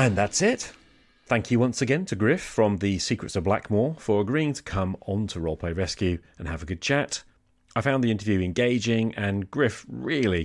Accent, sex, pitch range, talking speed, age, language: British, male, 85-115 Hz, 200 wpm, 40-59, English